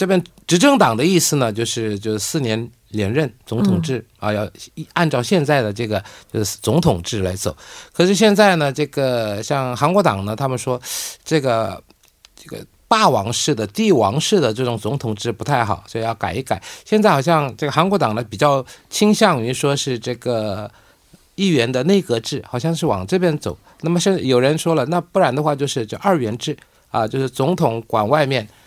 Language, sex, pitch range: Korean, male, 110-155 Hz